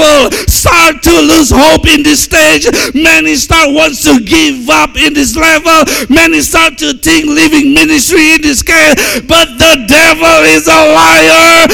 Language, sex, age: English, male, 50-69